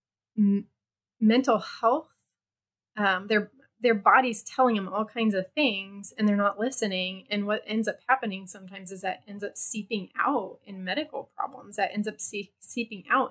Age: 20-39